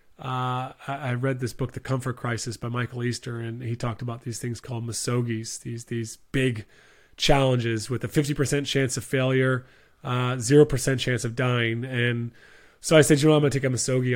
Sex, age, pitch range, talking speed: male, 30-49, 120-135 Hz, 195 wpm